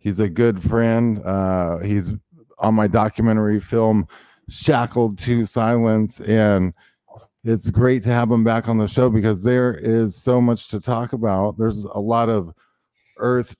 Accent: American